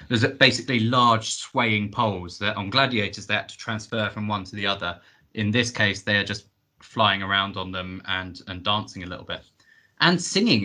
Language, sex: English, male